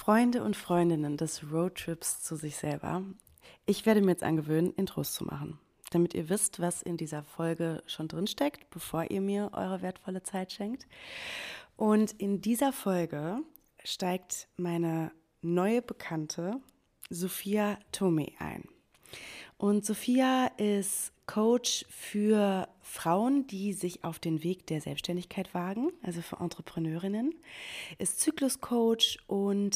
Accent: German